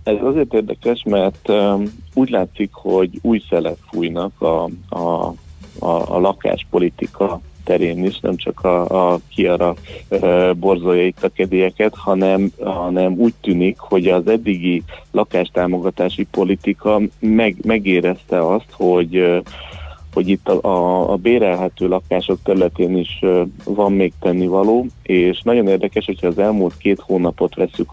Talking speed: 140 wpm